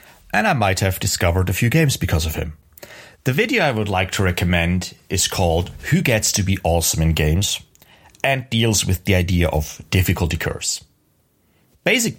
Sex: male